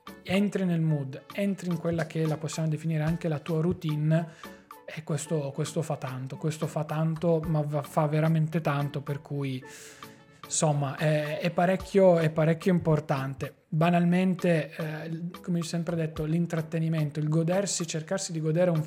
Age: 20-39